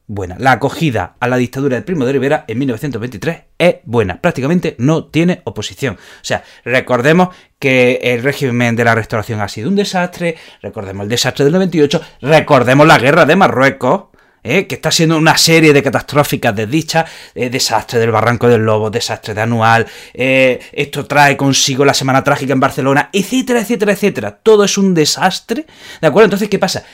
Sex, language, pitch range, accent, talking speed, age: male, Spanish, 125-175 Hz, Spanish, 170 wpm, 30-49